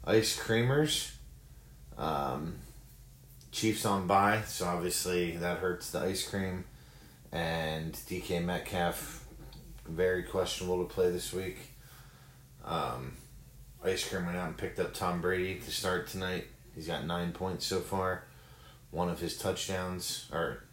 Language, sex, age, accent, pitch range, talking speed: English, male, 30-49, American, 80-95 Hz, 135 wpm